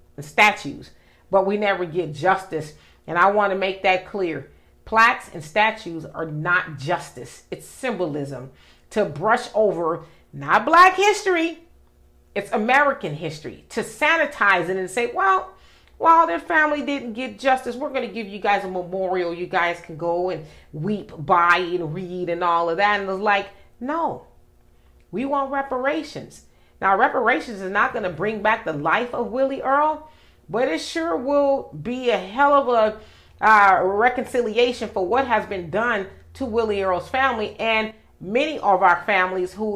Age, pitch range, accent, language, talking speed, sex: 40-59, 180-255 Hz, American, English, 170 wpm, female